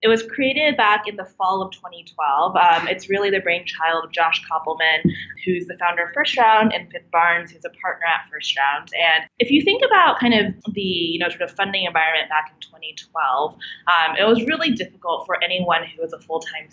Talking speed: 215 wpm